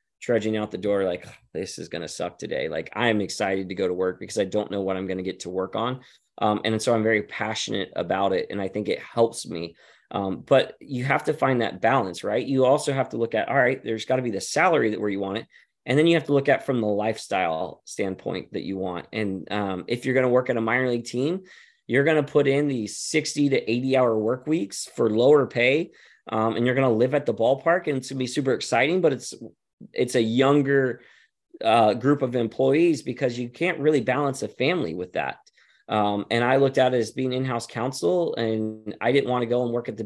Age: 20-39